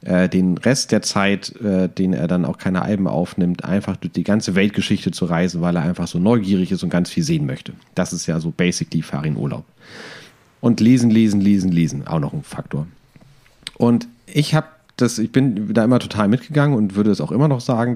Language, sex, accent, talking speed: German, male, German, 205 wpm